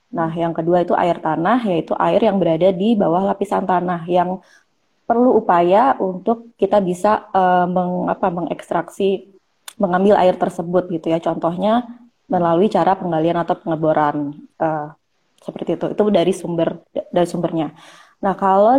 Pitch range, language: 170-195 Hz, Indonesian